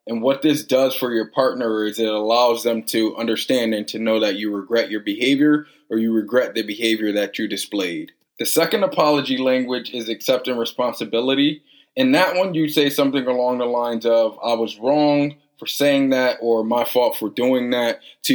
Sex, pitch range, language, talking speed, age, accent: male, 110-135 Hz, English, 195 wpm, 20-39, American